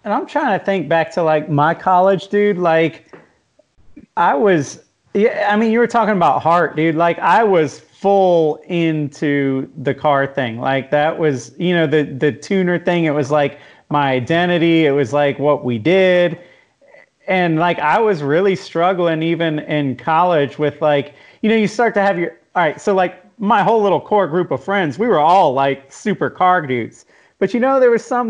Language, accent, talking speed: English, American, 195 wpm